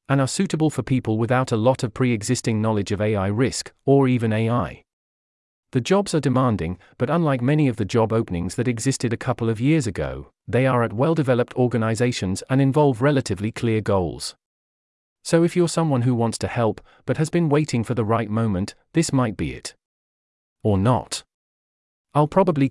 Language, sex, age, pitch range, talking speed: English, male, 40-59, 105-140 Hz, 180 wpm